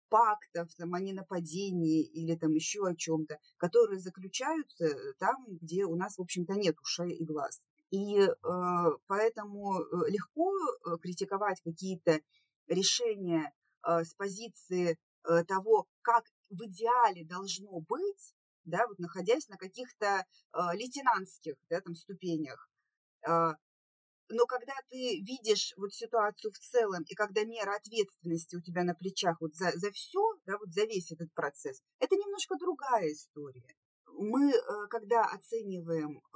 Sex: female